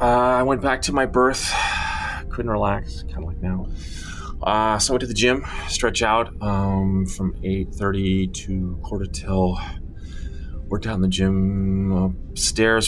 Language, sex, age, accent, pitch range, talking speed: English, male, 30-49, American, 80-95 Hz, 160 wpm